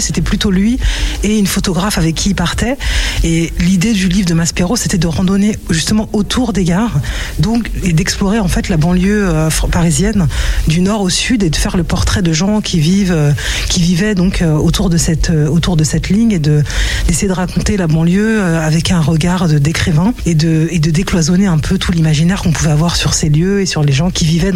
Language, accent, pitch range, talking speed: French, French, 160-195 Hz, 215 wpm